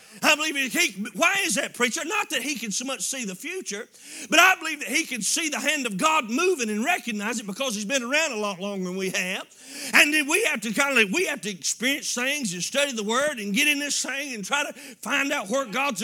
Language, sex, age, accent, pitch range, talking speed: English, male, 40-59, American, 240-300 Hz, 260 wpm